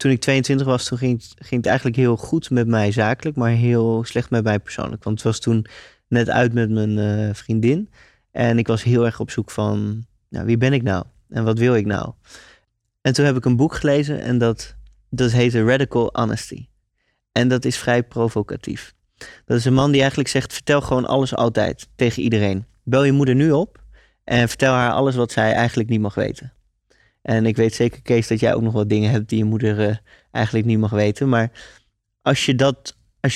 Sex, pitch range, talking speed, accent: male, 110-130 Hz, 210 wpm, Dutch